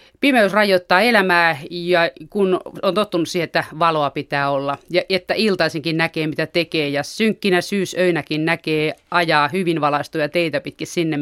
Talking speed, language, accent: 150 wpm, Finnish, native